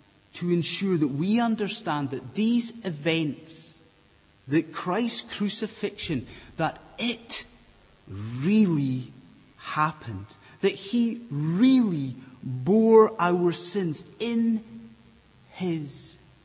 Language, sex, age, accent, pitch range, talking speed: English, male, 30-49, British, 135-220 Hz, 85 wpm